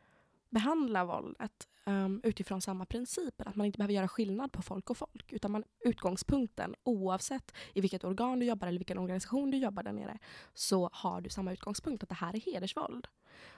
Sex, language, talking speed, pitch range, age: female, Swedish, 185 wpm, 185-225 Hz, 20-39